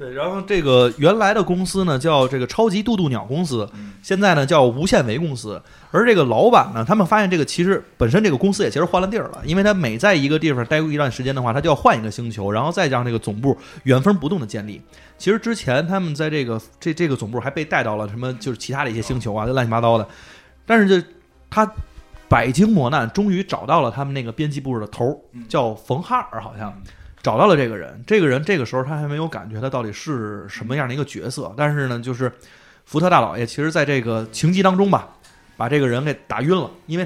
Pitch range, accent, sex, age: 120-175 Hz, native, male, 20-39